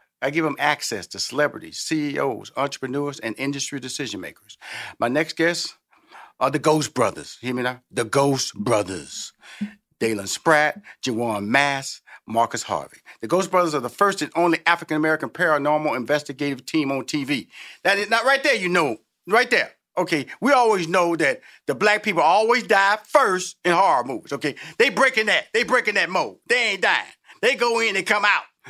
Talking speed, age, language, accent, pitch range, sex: 180 wpm, 40-59, English, American, 140-195 Hz, male